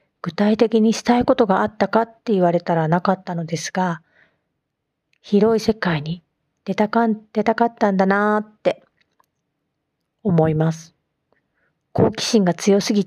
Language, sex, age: Japanese, female, 40-59